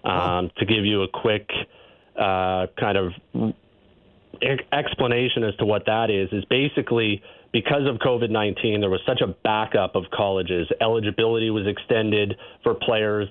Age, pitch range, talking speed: 30-49, 100-115 Hz, 150 wpm